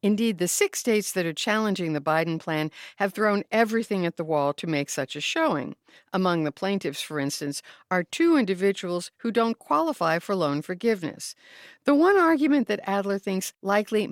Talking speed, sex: 180 wpm, female